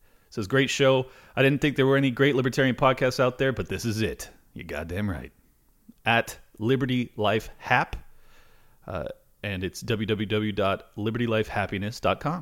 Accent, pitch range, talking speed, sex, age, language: American, 105-130 Hz, 140 wpm, male, 30-49, English